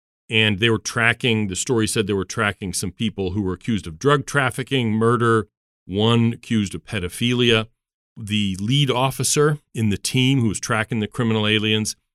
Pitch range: 95-125 Hz